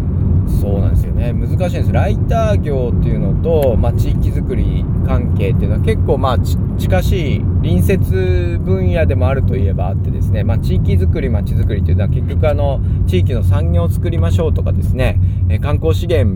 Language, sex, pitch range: Japanese, male, 90-105 Hz